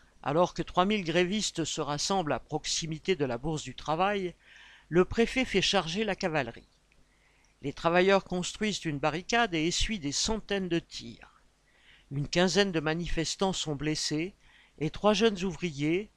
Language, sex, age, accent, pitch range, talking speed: French, male, 50-69, French, 155-195 Hz, 150 wpm